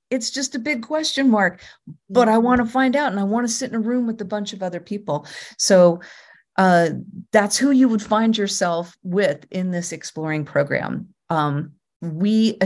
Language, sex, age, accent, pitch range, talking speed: English, female, 40-59, American, 170-225 Hz, 195 wpm